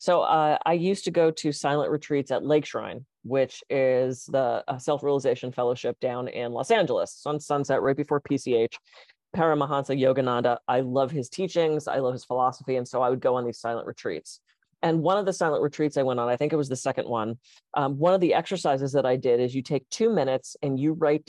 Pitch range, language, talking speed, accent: 130-170 Hz, English, 220 wpm, American